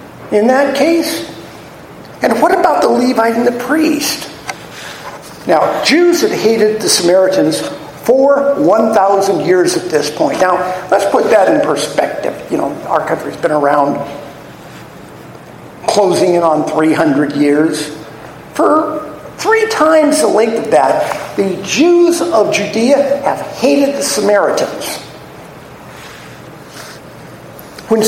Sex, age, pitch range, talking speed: male, 50-69, 185-280 Hz, 120 wpm